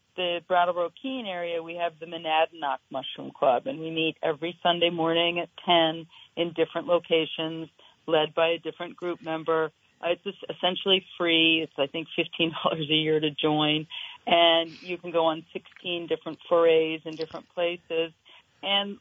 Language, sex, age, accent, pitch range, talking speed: English, female, 40-59, American, 160-190 Hz, 165 wpm